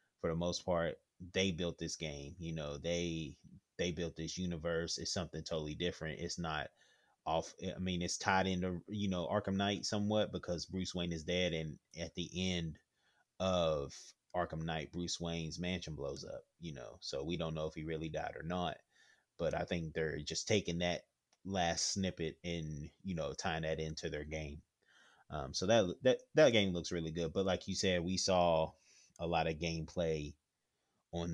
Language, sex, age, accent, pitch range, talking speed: English, male, 30-49, American, 80-95 Hz, 190 wpm